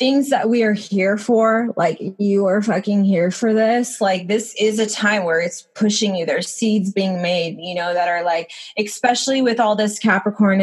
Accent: American